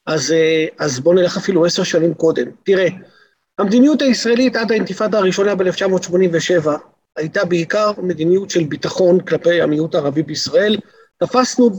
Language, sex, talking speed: Hebrew, male, 125 wpm